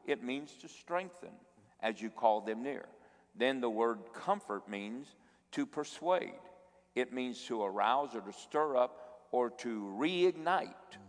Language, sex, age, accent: English, male, 50-69, American